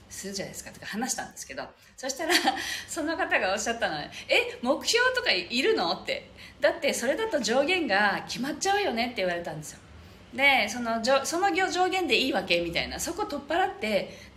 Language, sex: Japanese, female